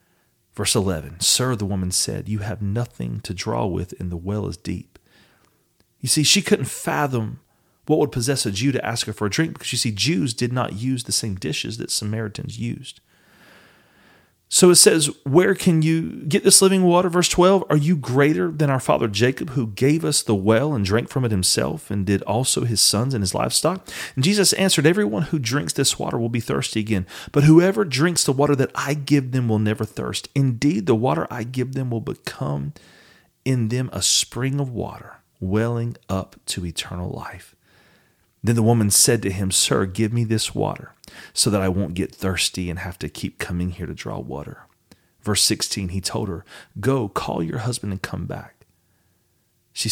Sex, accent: male, American